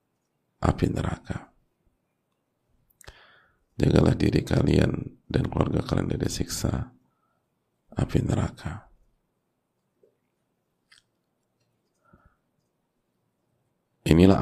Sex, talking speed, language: male, 55 wpm, Indonesian